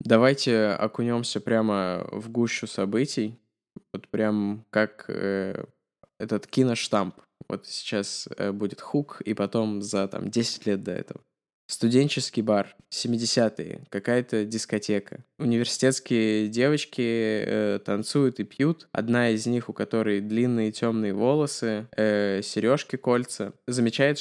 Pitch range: 105-125 Hz